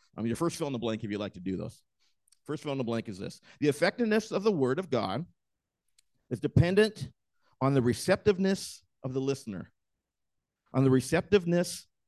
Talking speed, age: 195 wpm, 50-69